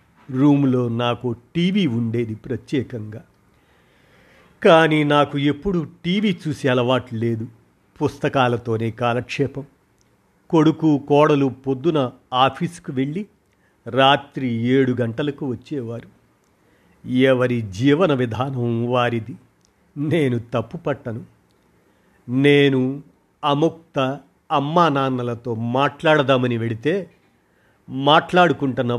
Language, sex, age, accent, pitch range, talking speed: Telugu, male, 50-69, native, 115-145 Hz, 75 wpm